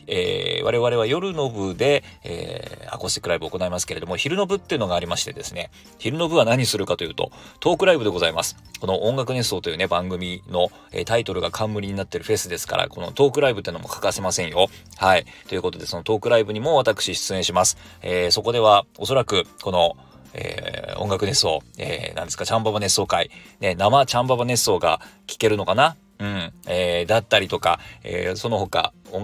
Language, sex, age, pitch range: Japanese, male, 40-59, 90-125 Hz